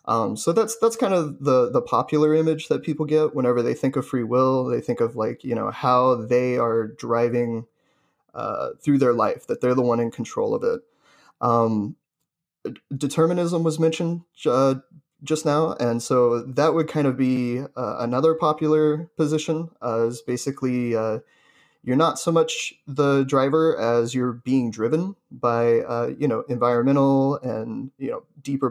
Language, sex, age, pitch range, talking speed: English, male, 30-49, 120-155 Hz, 170 wpm